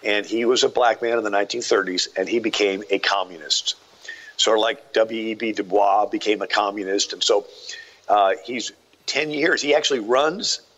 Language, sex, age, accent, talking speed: English, male, 50-69, American, 180 wpm